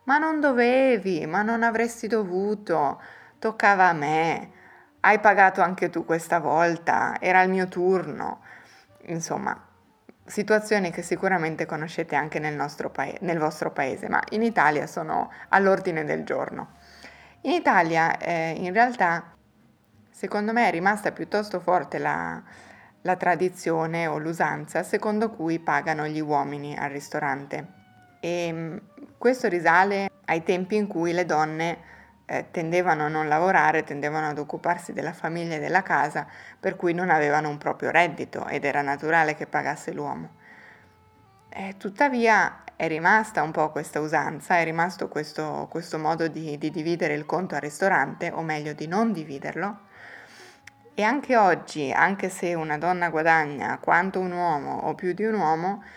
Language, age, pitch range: Italian, 20-39, 155-195 Hz